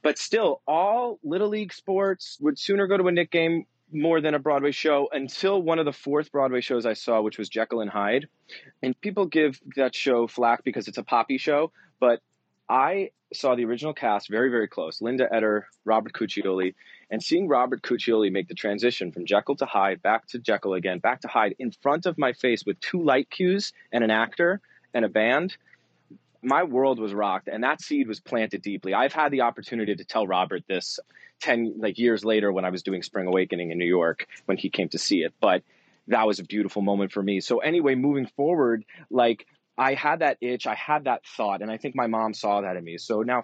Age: 30-49